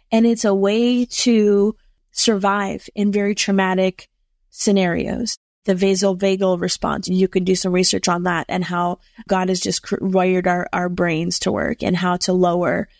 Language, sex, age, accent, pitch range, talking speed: English, female, 20-39, American, 185-210 Hz, 160 wpm